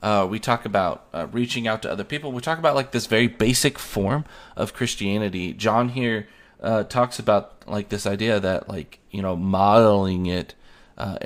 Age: 30-49